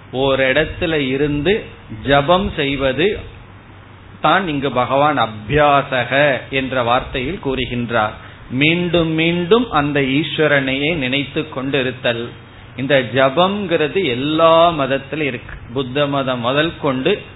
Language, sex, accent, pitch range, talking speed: Tamil, male, native, 125-155 Hz, 85 wpm